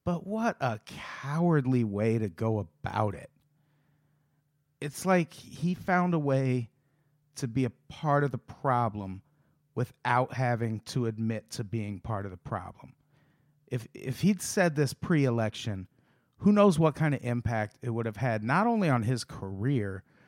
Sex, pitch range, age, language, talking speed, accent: male, 115-145 Hz, 40-59, English, 155 wpm, American